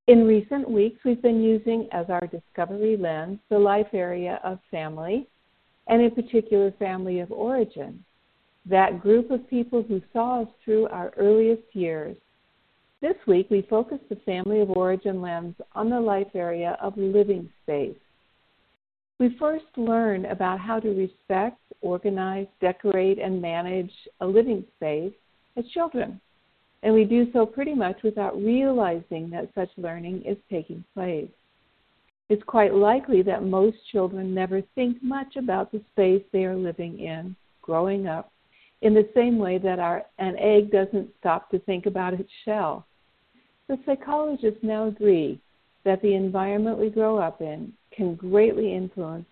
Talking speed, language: 150 wpm, English